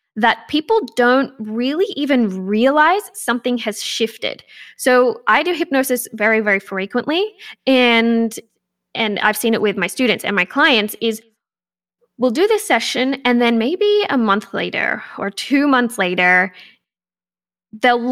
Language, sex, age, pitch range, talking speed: English, female, 10-29, 215-280 Hz, 140 wpm